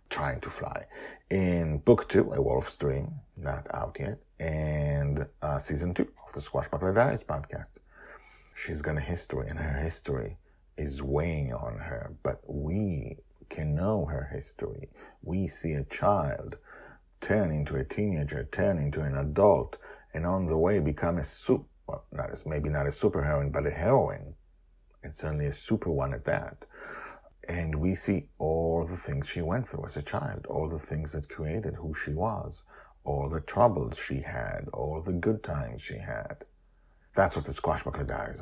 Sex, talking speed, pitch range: male, 170 wpm, 75-90 Hz